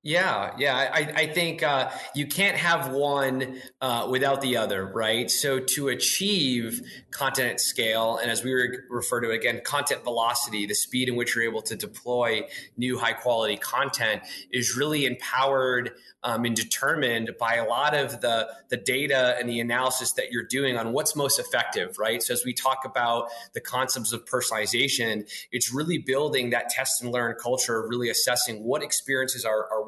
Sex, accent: male, American